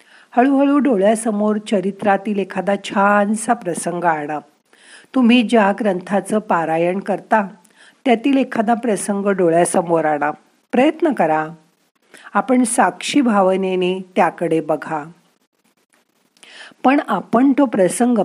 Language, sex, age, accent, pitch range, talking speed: Marathi, female, 50-69, native, 180-240 Hz, 90 wpm